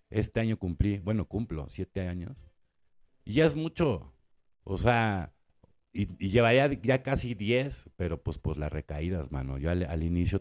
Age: 50-69